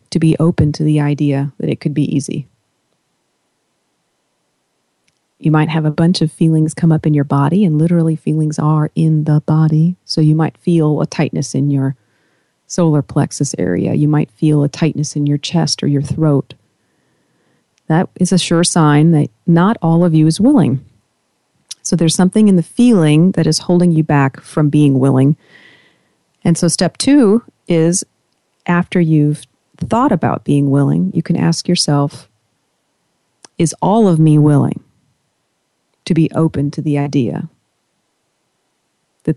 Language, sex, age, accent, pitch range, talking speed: English, female, 40-59, American, 150-175 Hz, 160 wpm